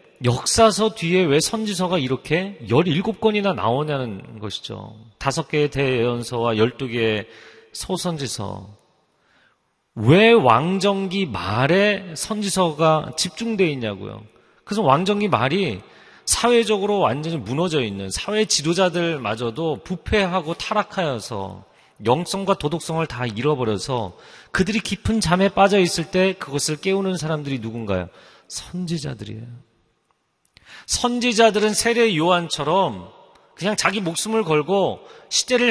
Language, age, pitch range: Korean, 40-59, 115-190 Hz